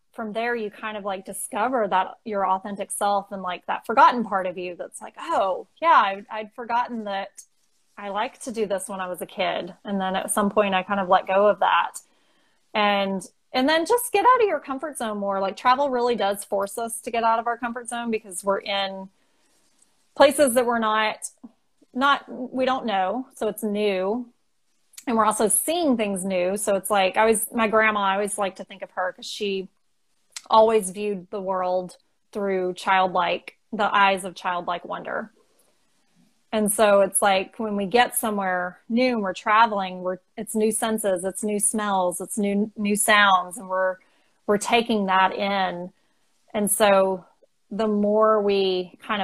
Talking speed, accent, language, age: 190 wpm, American, English, 30-49